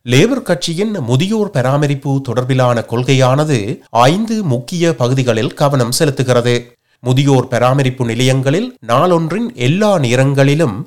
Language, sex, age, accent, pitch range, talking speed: Tamil, male, 30-49, native, 125-160 Hz, 95 wpm